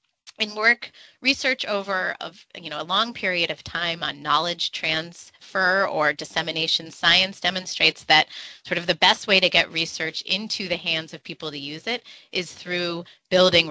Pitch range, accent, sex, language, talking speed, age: 155-205 Hz, American, female, English, 170 wpm, 20-39